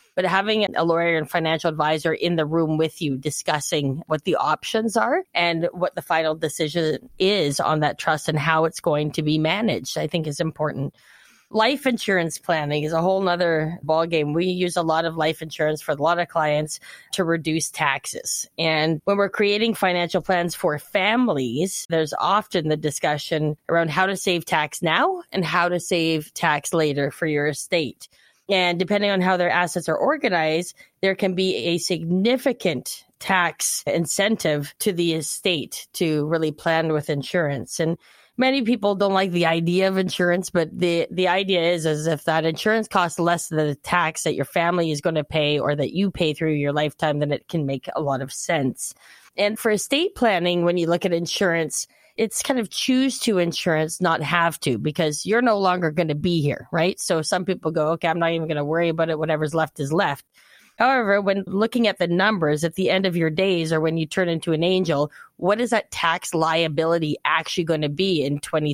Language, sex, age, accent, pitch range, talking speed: English, female, 20-39, American, 155-185 Hz, 195 wpm